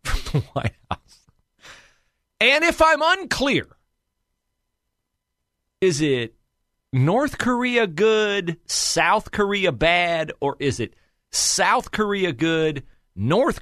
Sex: male